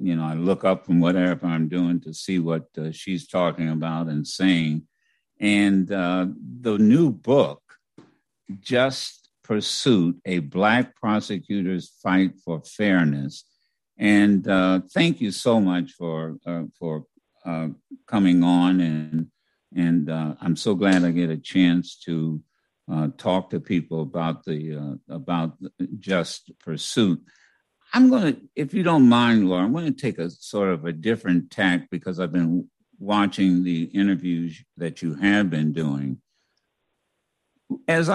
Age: 60-79